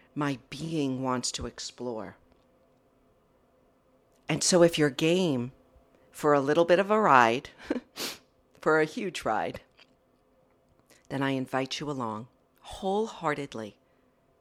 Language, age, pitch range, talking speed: English, 50-69, 130-150 Hz, 110 wpm